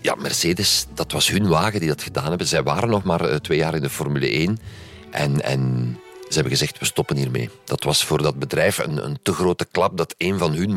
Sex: male